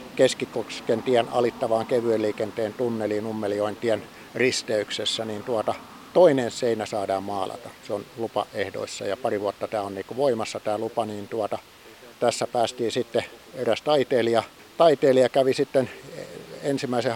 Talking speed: 125 wpm